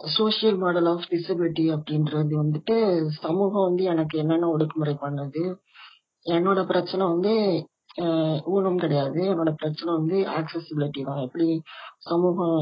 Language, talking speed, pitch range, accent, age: Tamil, 110 wpm, 150-180 Hz, native, 20-39